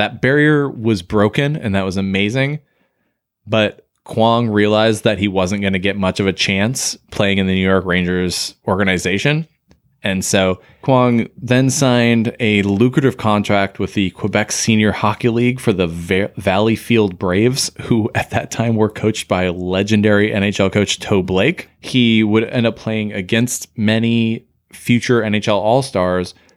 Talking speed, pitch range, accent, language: 155 wpm, 100-125 Hz, American, English